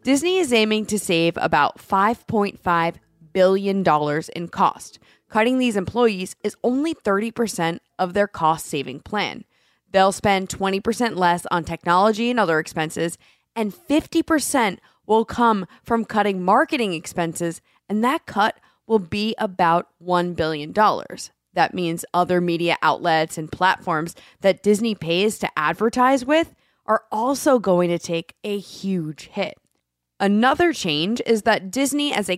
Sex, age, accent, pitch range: female, 20-39, American, 175-235 Hz